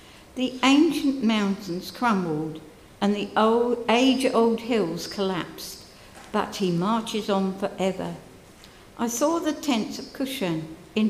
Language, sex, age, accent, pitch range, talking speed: English, female, 60-79, British, 175-235 Hz, 120 wpm